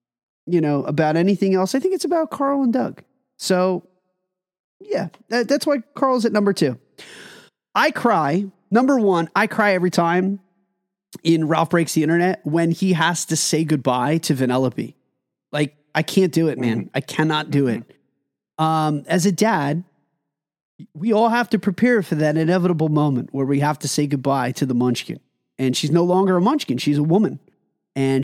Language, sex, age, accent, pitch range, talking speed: English, male, 30-49, American, 150-195 Hz, 175 wpm